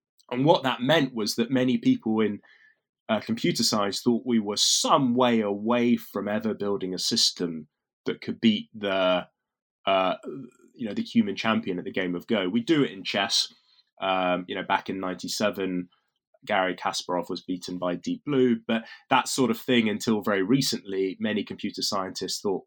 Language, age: English, 20-39